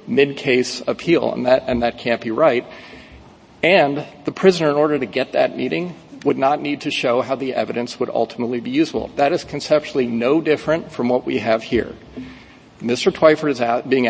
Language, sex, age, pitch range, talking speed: English, male, 40-59, 120-150 Hz, 195 wpm